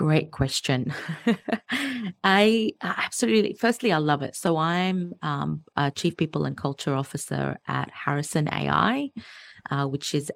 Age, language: 30-49, English